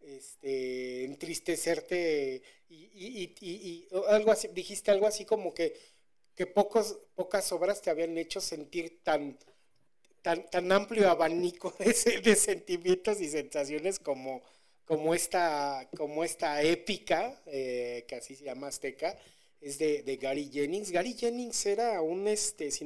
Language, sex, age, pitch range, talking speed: Spanish, male, 40-59, 140-180 Hz, 125 wpm